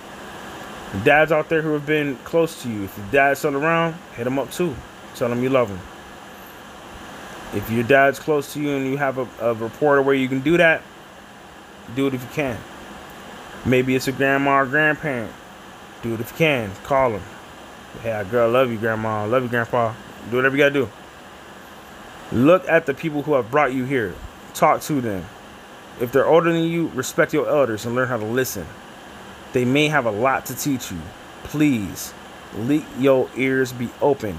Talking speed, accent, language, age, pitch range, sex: 190 wpm, American, English, 20-39, 120-150 Hz, male